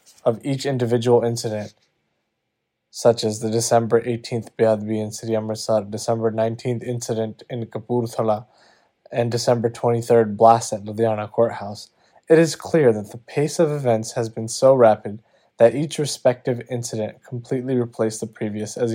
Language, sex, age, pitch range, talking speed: Punjabi, male, 20-39, 110-130 Hz, 145 wpm